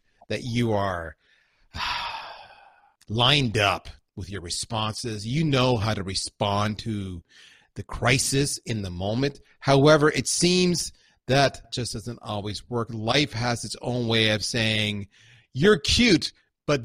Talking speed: 130 wpm